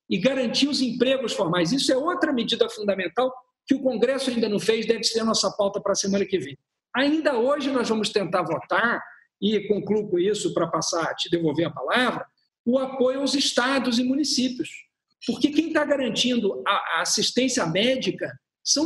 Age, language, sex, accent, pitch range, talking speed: 50-69, Portuguese, male, Brazilian, 210-275 Hz, 180 wpm